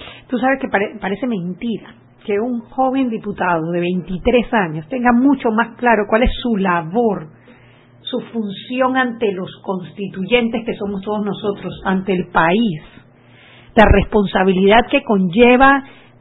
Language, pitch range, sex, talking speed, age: Spanish, 205-270 Hz, female, 135 wpm, 40-59